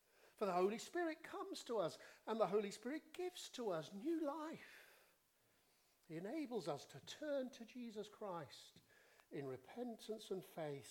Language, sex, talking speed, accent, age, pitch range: English, male, 155 wpm, British, 50-69, 135-220 Hz